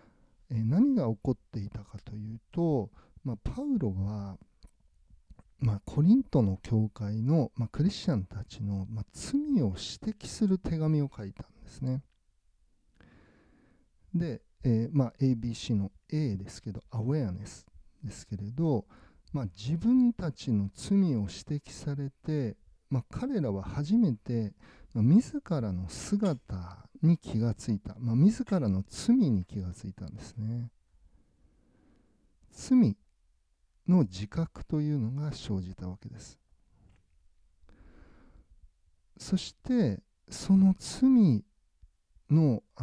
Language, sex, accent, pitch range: Japanese, male, native, 100-155 Hz